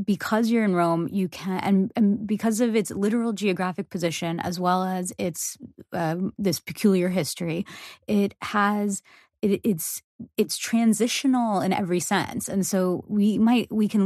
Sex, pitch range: female, 175-205 Hz